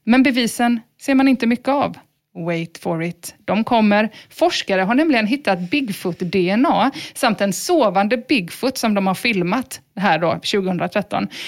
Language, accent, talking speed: English, Swedish, 145 wpm